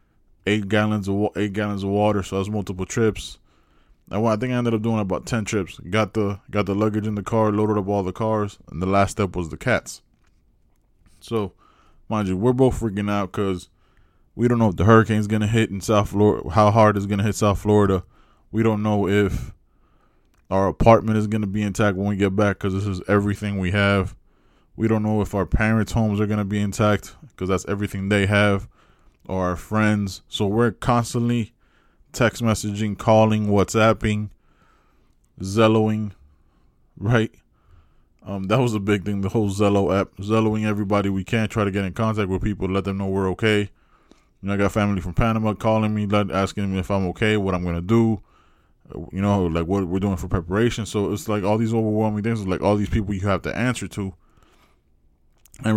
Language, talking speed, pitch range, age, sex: English, 200 wpm, 95-110 Hz, 20-39, male